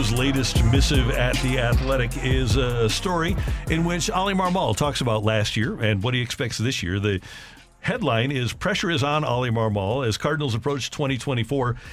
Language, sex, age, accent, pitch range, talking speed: English, male, 50-69, American, 110-145 Hz, 170 wpm